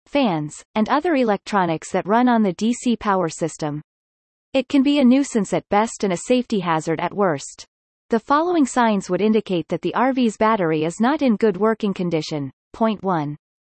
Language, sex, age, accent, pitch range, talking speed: English, female, 30-49, American, 175-245 Hz, 175 wpm